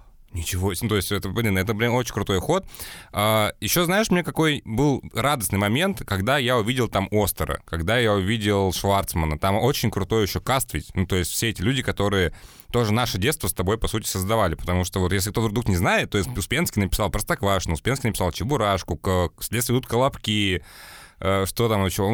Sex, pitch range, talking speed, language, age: male, 95-120 Hz, 190 wpm, Russian, 20-39